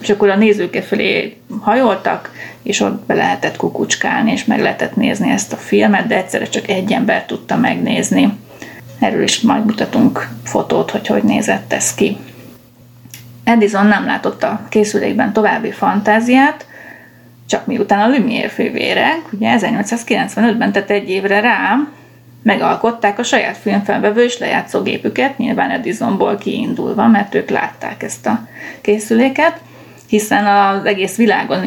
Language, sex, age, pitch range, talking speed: Hungarian, female, 30-49, 205-245 Hz, 135 wpm